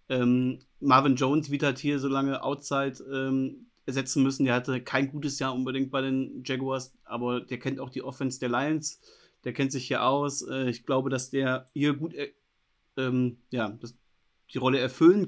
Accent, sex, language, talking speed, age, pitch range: German, male, German, 185 wpm, 30-49, 130-155 Hz